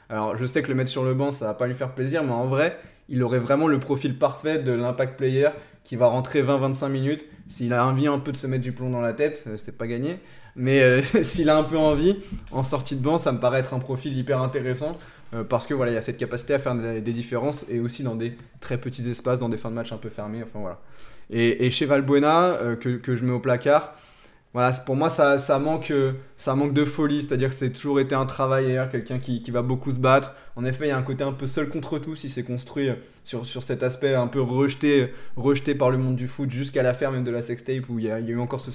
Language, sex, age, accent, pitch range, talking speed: French, male, 20-39, French, 120-140 Hz, 275 wpm